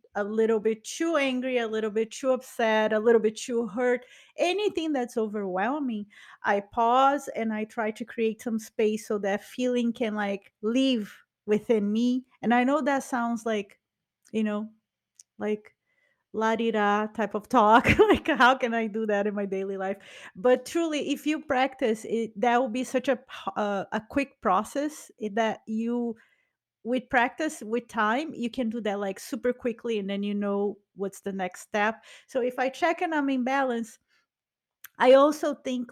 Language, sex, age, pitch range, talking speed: English, female, 30-49, 205-255 Hz, 175 wpm